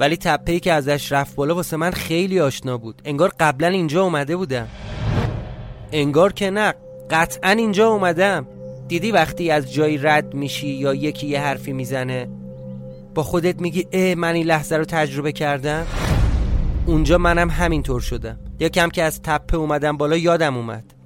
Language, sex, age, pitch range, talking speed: Persian, male, 30-49, 125-165 Hz, 160 wpm